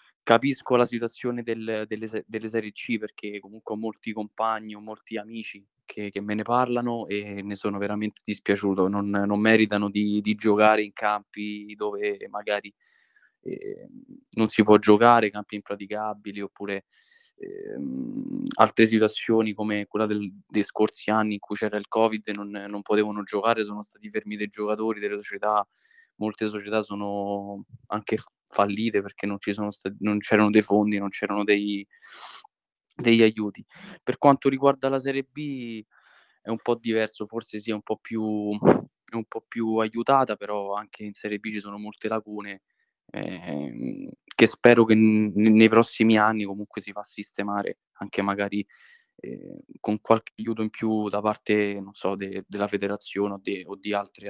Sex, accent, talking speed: male, native, 165 wpm